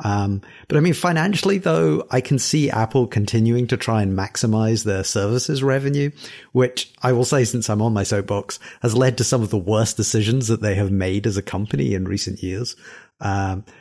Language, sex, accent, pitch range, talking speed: English, male, British, 100-135 Hz, 200 wpm